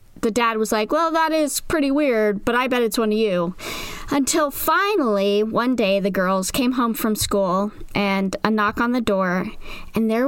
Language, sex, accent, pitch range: English, female, American, 195-265 Hz